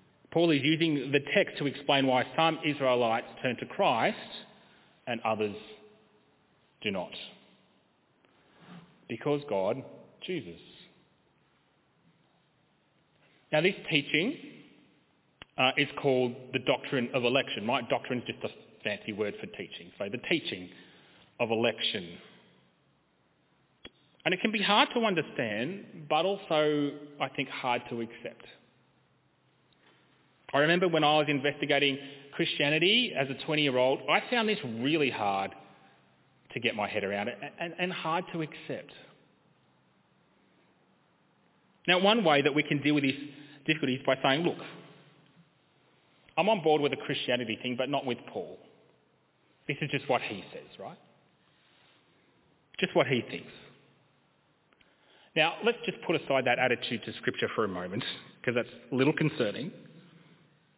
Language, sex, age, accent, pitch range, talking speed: English, male, 30-49, Australian, 130-165 Hz, 135 wpm